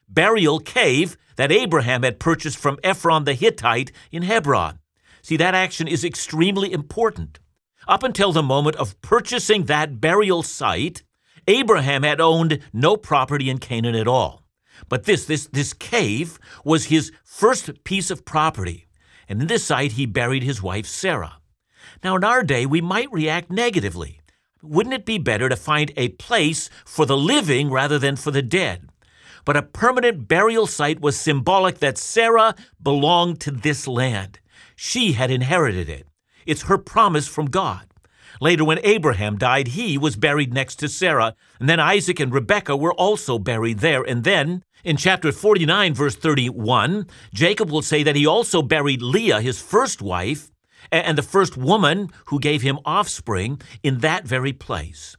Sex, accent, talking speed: male, American, 165 wpm